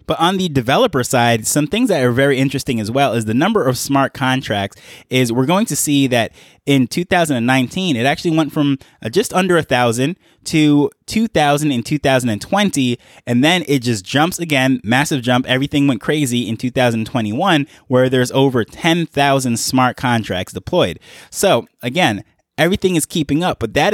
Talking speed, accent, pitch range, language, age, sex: 170 wpm, American, 120-145 Hz, English, 20-39, male